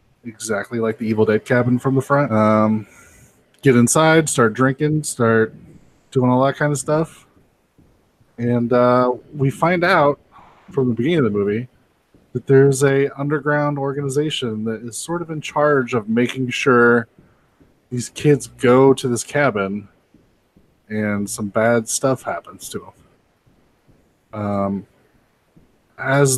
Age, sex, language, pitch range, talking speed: 20-39, male, English, 110-135 Hz, 140 wpm